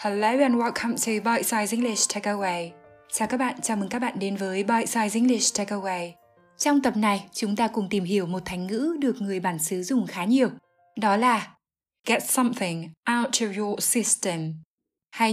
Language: Vietnamese